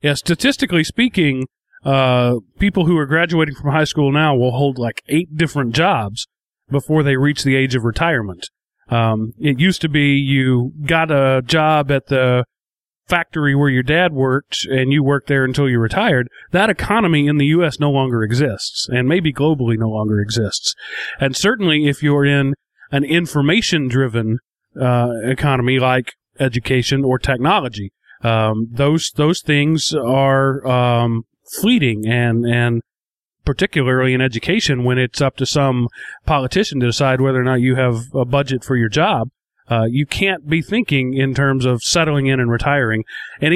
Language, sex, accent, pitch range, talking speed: English, male, American, 125-155 Hz, 165 wpm